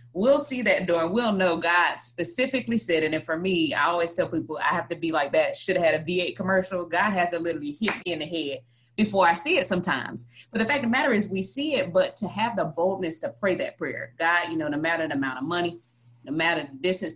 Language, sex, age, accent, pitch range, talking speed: English, female, 20-39, American, 150-185 Hz, 265 wpm